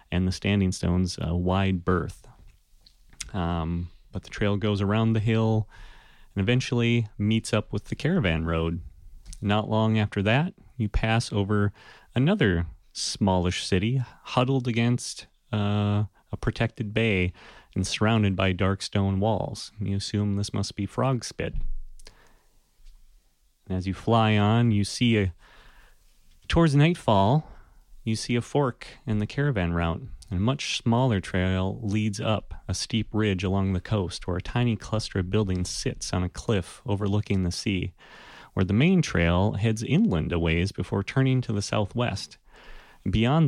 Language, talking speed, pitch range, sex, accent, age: English, 150 wpm, 95-115 Hz, male, American, 30-49